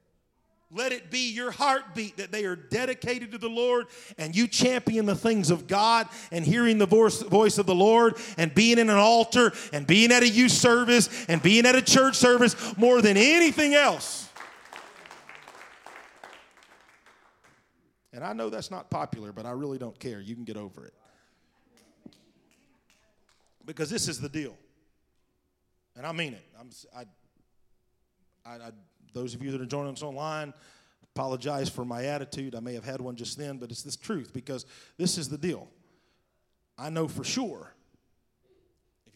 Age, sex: 40-59, male